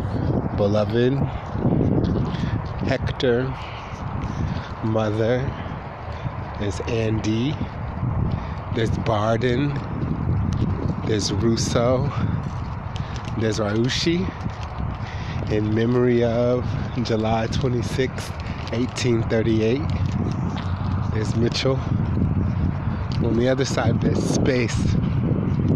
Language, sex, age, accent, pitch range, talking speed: English, male, 30-49, American, 100-120 Hz, 60 wpm